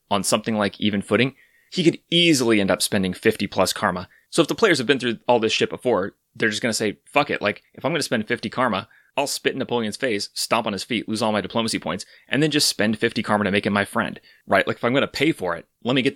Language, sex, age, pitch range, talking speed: English, male, 30-49, 100-125 Hz, 285 wpm